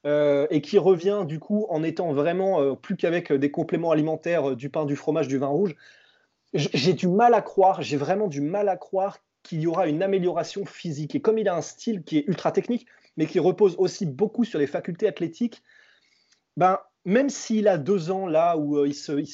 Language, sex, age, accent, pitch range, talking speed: French, male, 20-39, French, 150-200 Hz, 225 wpm